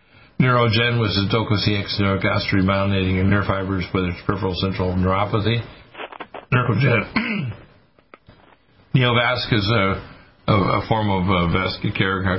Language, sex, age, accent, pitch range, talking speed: English, male, 60-79, American, 95-110 Hz, 115 wpm